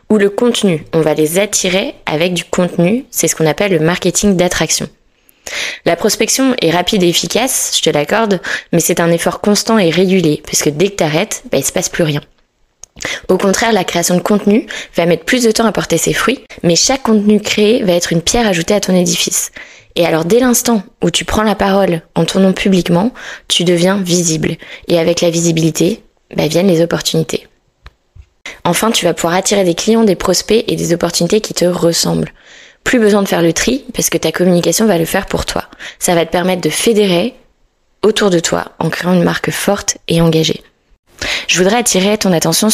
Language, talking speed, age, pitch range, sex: French, 205 wpm, 20-39, 165-205 Hz, female